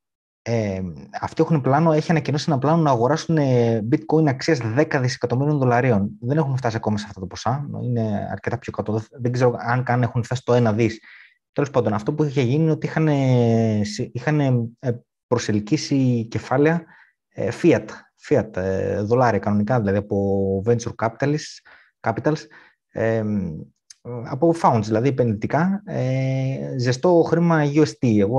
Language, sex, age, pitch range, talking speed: Greek, male, 20-39, 110-150 Hz, 135 wpm